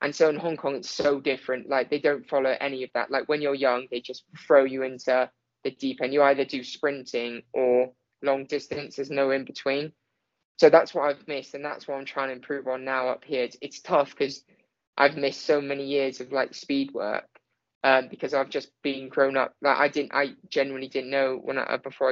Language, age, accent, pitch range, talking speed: English, 10-29, British, 130-140 Hz, 230 wpm